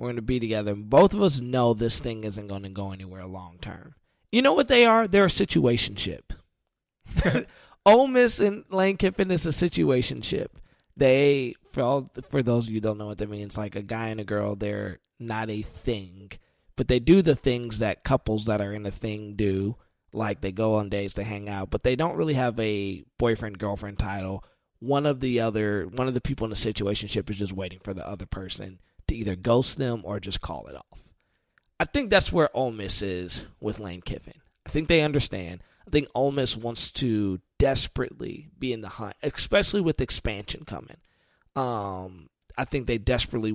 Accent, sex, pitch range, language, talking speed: American, male, 100-125 Hz, English, 205 wpm